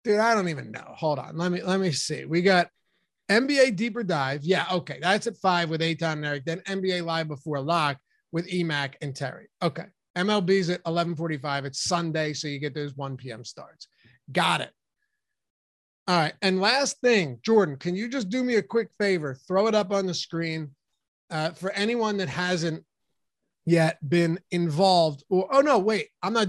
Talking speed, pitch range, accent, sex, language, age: 190 wpm, 160-200 Hz, American, male, English, 30-49